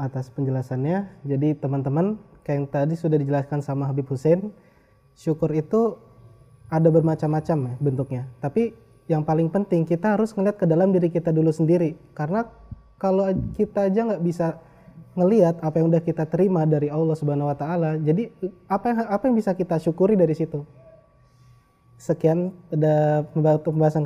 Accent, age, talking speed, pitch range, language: native, 20-39, 150 wpm, 140-170 Hz, Indonesian